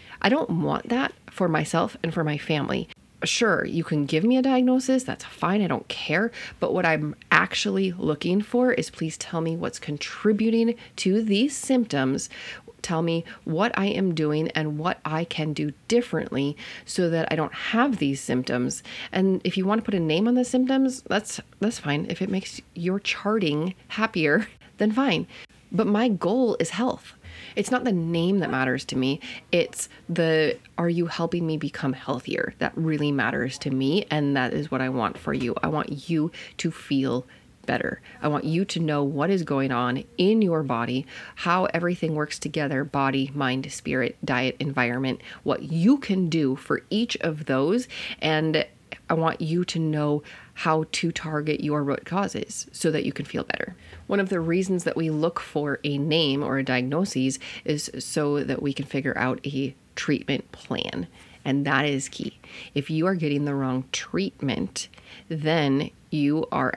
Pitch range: 140-185 Hz